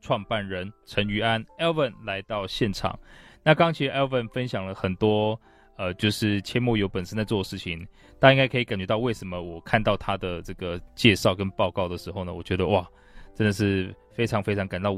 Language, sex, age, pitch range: Chinese, male, 20-39, 95-115 Hz